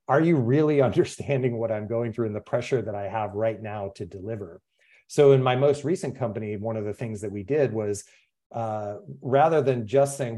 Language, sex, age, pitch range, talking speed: English, male, 30-49, 105-135 Hz, 215 wpm